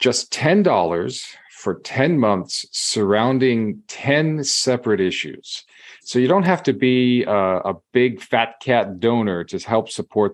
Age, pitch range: 40-59, 105-150 Hz